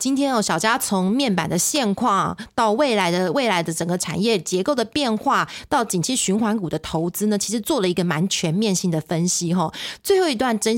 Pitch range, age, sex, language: 185-240 Hz, 20-39, female, Chinese